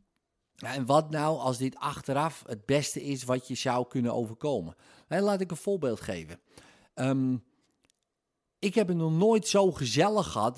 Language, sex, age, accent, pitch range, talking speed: Dutch, male, 50-69, Dutch, 115-155 Hz, 170 wpm